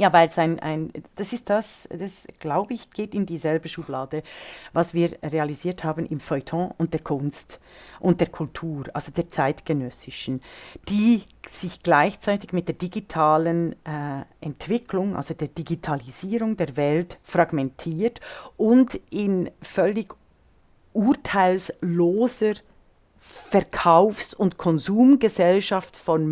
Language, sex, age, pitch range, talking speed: German, female, 40-59, 160-210 Hz, 120 wpm